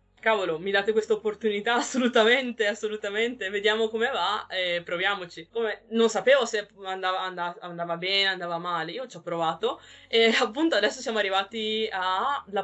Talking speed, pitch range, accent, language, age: 140 wpm, 180-215 Hz, native, Italian, 20-39